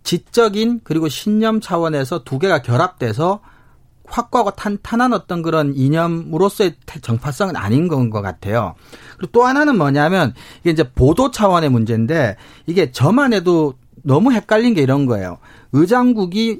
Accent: native